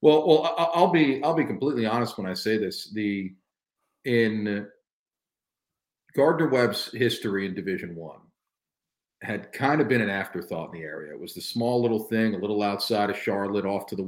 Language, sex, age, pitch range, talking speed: English, male, 40-59, 90-110 Hz, 185 wpm